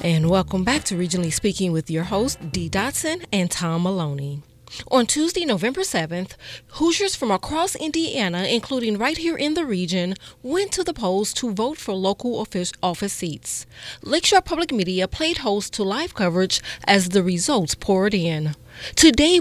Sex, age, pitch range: female, 30-49, 185-300 Hz